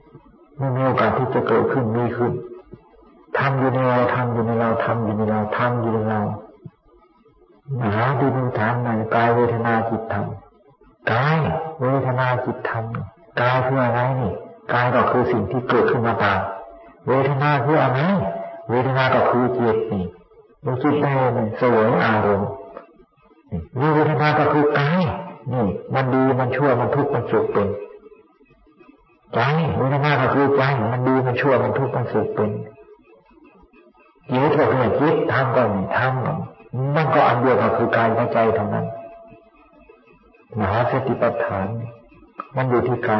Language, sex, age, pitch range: Thai, male, 50-69, 115-140 Hz